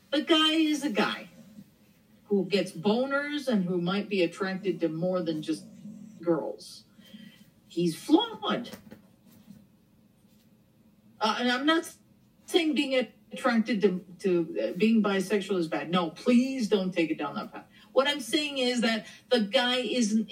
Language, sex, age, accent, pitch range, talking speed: English, female, 50-69, American, 190-260 Hz, 145 wpm